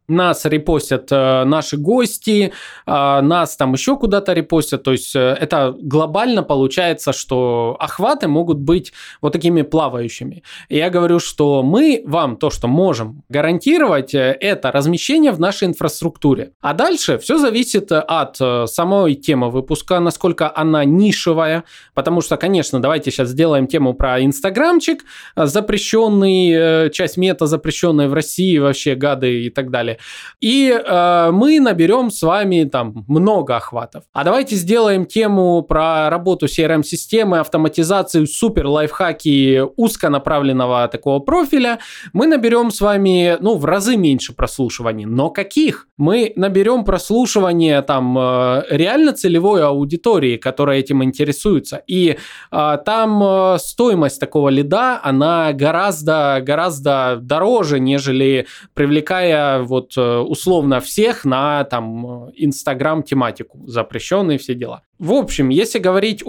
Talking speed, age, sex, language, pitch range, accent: 125 wpm, 20-39, male, Russian, 140-195 Hz, native